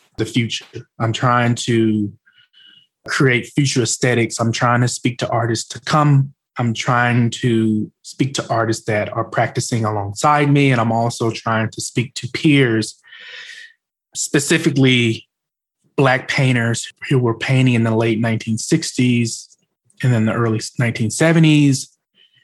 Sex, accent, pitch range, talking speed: male, American, 115-135 Hz, 135 wpm